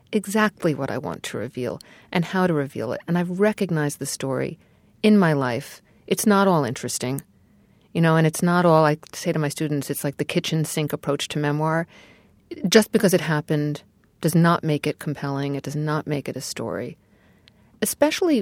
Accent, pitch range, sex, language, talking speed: American, 145-170 Hz, female, English, 190 wpm